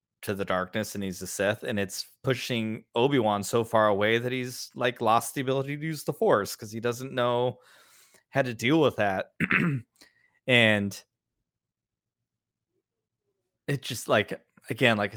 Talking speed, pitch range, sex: 155 wpm, 105-125 Hz, male